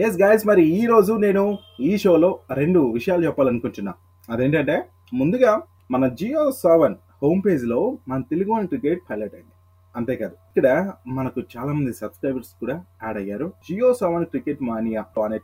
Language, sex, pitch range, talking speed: Telugu, male, 105-160 Hz, 150 wpm